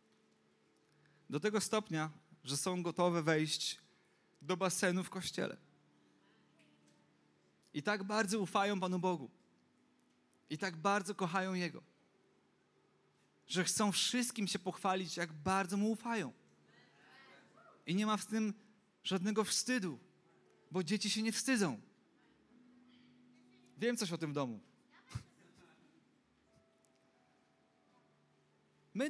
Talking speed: 100 wpm